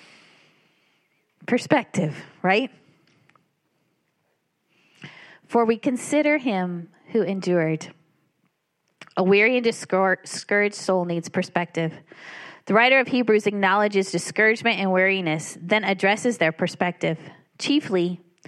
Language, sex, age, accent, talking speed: English, female, 30-49, American, 90 wpm